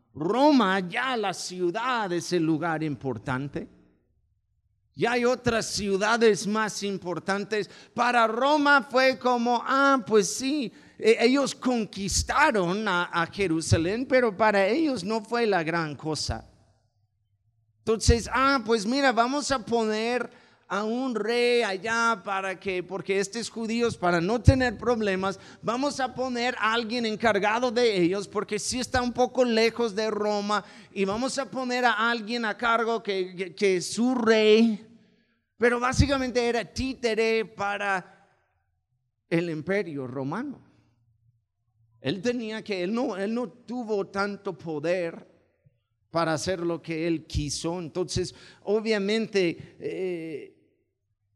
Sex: male